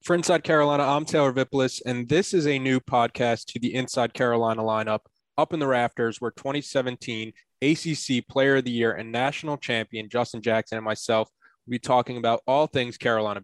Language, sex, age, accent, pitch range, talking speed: English, male, 20-39, American, 115-140 Hz, 190 wpm